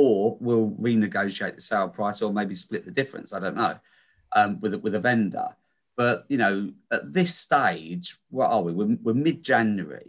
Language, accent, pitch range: English, British, 95-140 Hz